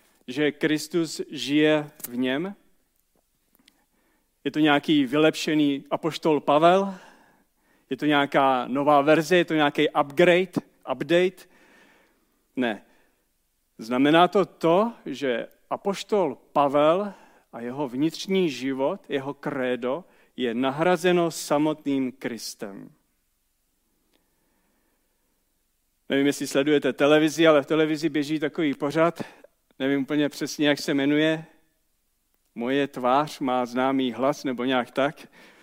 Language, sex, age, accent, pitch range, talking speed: Czech, male, 40-59, native, 135-170 Hz, 105 wpm